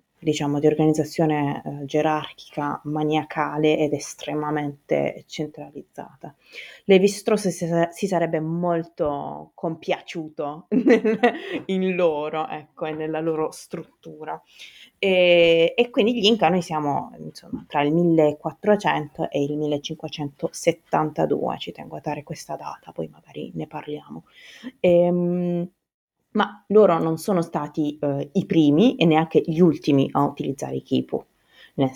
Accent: native